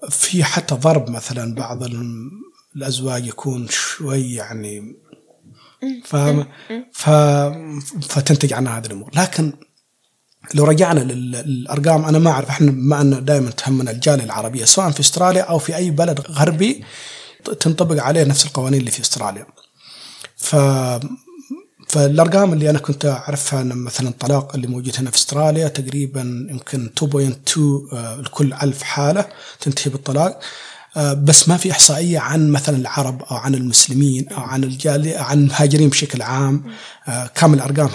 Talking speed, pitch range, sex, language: 130 wpm, 130-155 Hz, male, Arabic